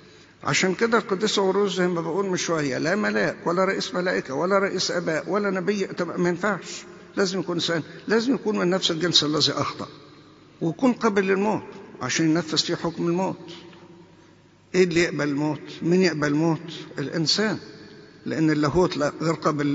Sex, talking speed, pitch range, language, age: male, 150 wpm, 145-185 Hz, English, 60-79